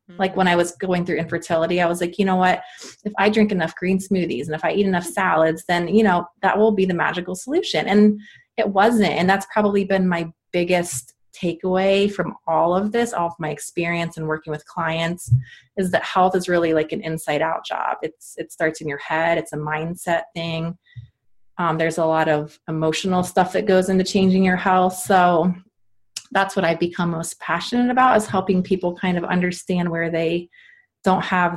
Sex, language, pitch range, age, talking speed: female, English, 165-195 Hz, 30-49, 205 wpm